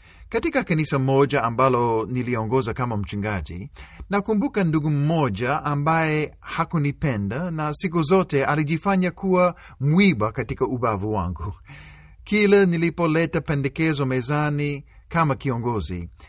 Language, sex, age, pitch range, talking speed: Swahili, male, 40-59, 105-165 Hz, 100 wpm